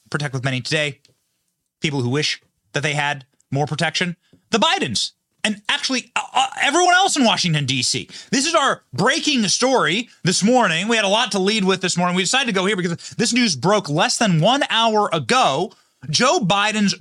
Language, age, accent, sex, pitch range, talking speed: English, 30-49, American, male, 170-245 Hz, 195 wpm